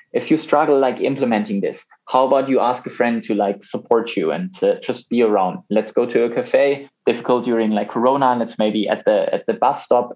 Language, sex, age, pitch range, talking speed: English, male, 20-39, 110-130 Hz, 225 wpm